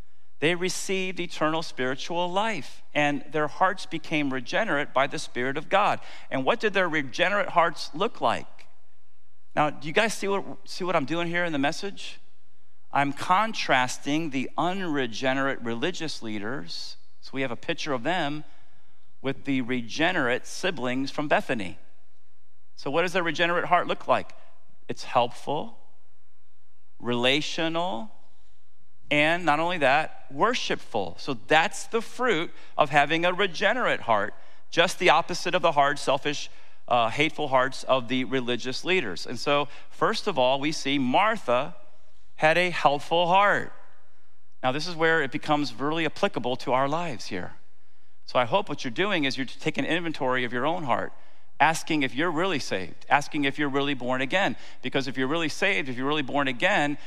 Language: English